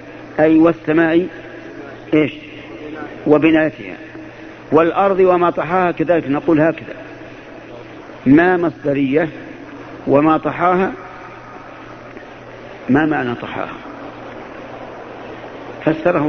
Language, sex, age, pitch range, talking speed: Arabic, male, 50-69, 150-180 Hz, 65 wpm